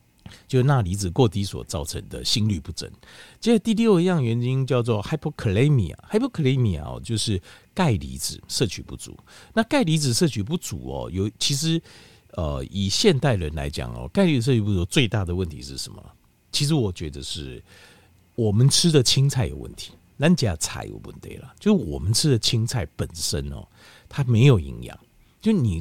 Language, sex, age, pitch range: Chinese, male, 50-69, 90-135 Hz